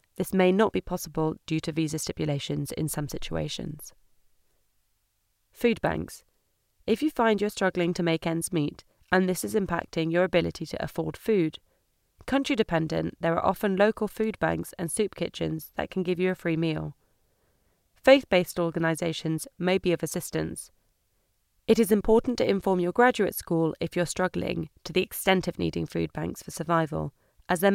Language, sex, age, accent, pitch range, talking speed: English, female, 30-49, British, 155-195 Hz, 165 wpm